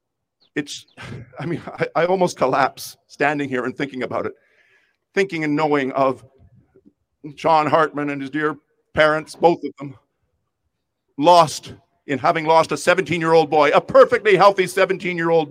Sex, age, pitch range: male, 50-69, 135-190 Hz